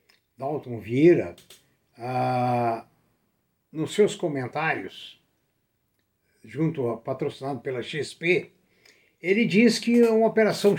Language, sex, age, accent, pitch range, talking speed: Portuguese, male, 60-79, Brazilian, 160-225 Hz, 90 wpm